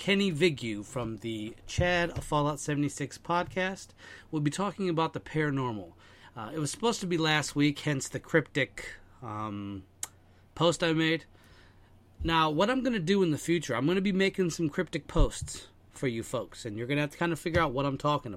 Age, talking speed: 30-49, 205 wpm